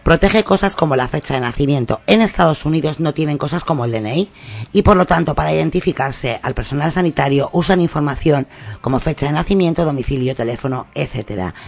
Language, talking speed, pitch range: Spanish, 175 wpm, 130-170 Hz